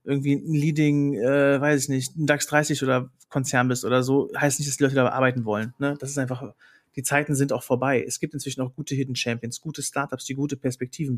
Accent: German